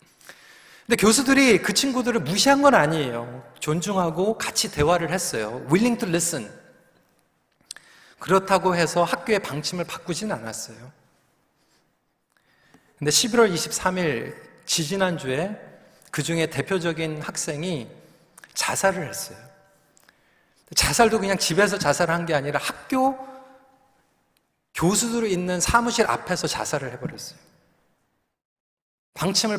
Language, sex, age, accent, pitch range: Korean, male, 40-59, native, 155-225 Hz